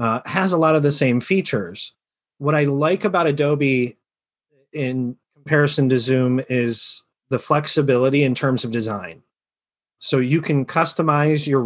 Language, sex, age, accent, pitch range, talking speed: English, male, 30-49, American, 120-150 Hz, 150 wpm